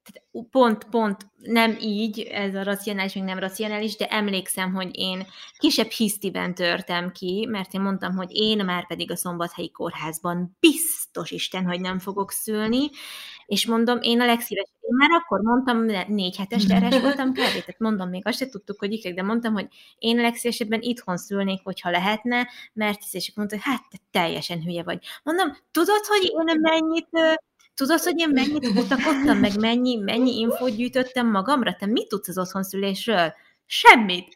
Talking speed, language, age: 170 wpm, Hungarian, 20-39